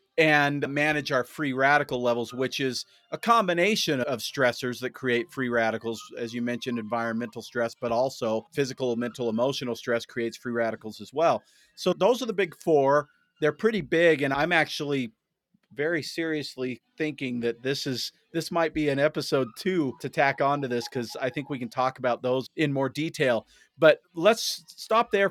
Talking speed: 180 wpm